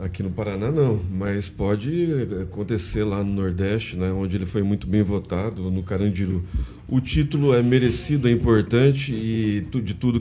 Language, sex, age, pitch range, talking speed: Portuguese, male, 40-59, 100-130 Hz, 165 wpm